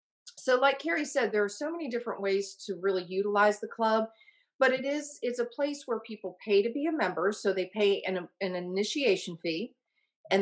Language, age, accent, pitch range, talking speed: English, 40-59, American, 185-235 Hz, 205 wpm